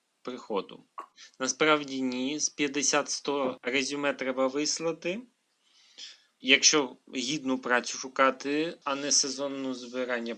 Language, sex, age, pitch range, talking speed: Ukrainian, male, 30-49, 130-175 Hz, 95 wpm